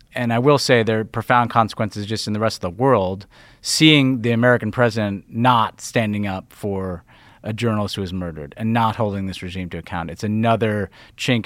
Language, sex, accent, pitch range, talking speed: English, male, American, 105-130 Hz, 200 wpm